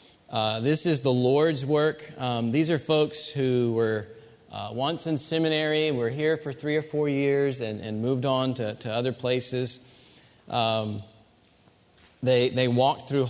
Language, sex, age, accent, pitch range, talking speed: English, male, 40-59, American, 115-150 Hz, 160 wpm